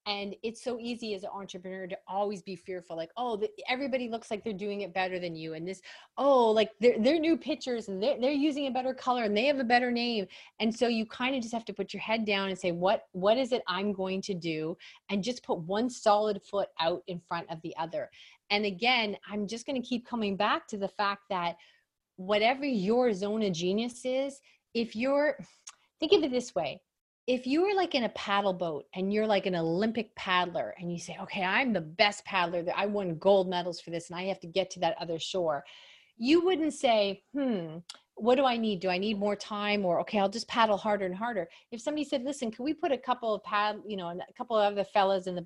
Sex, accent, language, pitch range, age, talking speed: female, American, English, 185-245 Hz, 30-49, 240 wpm